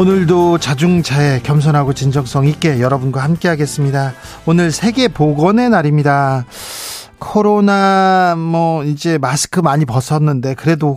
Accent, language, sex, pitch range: native, Korean, male, 130-165 Hz